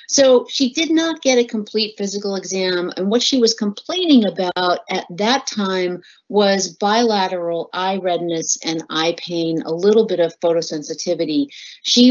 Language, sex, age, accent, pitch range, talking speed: English, female, 40-59, American, 170-245 Hz, 155 wpm